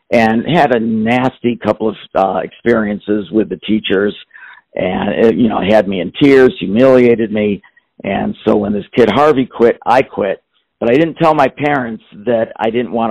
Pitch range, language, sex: 110-130 Hz, English, male